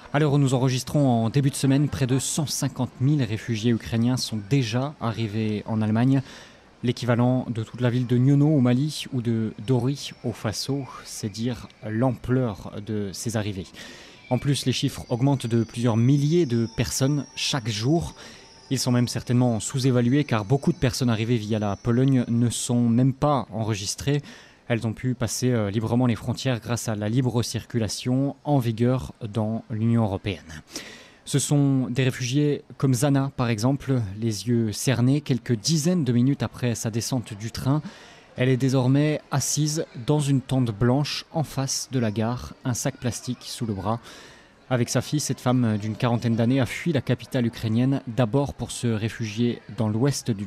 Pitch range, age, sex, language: 115-135 Hz, 30-49, male, French